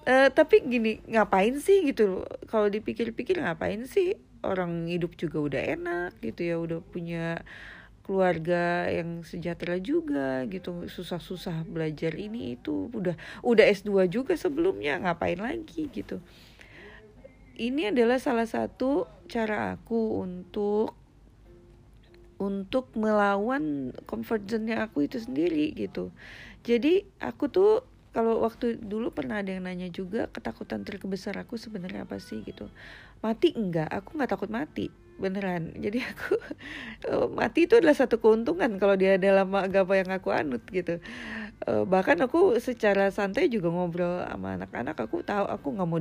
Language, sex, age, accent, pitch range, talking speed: Indonesian, female, 40-59, native, 175-240 Hz, 135 wpm